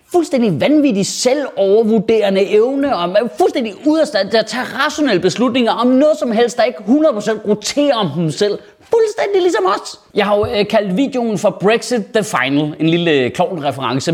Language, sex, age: Danish, male, 30-49